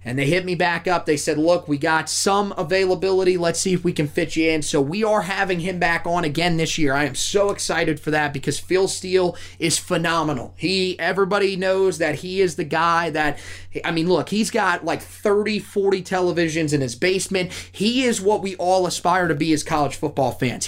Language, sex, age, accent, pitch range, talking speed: English, male, 30-49, American, 150-185 Hz, 220 wpm